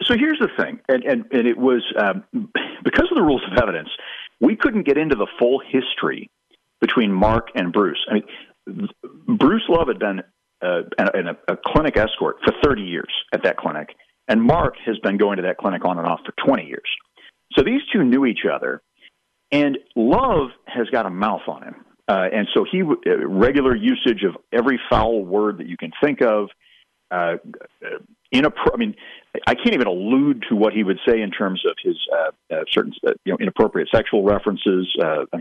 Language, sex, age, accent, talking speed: English, male, 50-69, American, 195 wpm